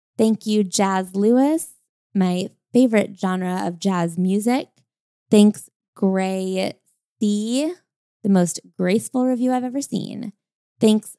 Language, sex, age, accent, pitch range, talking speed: English, female, 20-39, American, 200-255 Hz, 115 wpm